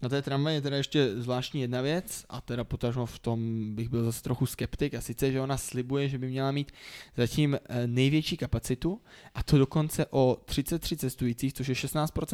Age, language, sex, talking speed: 20-39, Czech, male, 200 wpm